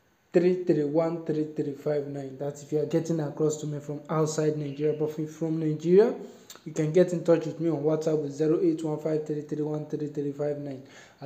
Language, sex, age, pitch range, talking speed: English, male, 20-39, 150-165 Hz, 180 wpm